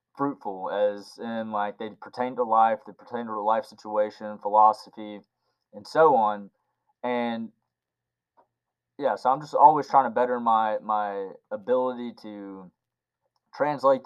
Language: English